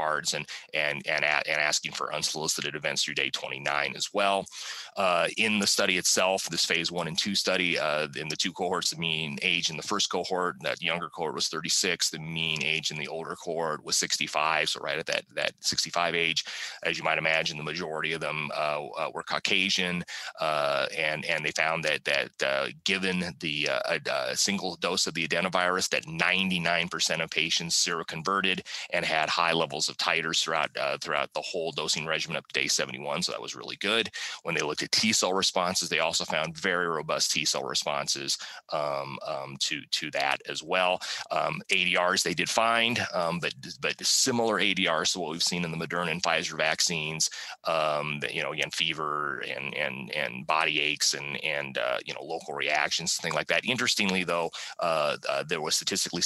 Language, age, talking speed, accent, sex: Italian, 30-49, 195 wpm, American, male